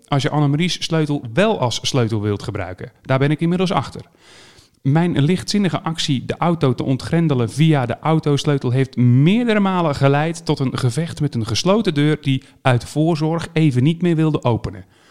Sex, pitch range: male, 115-160 Hz